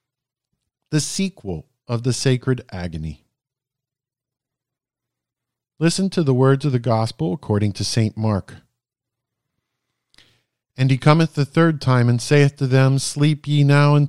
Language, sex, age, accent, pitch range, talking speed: English, male, 50-69, American, 110-135 Hz, 130 wpm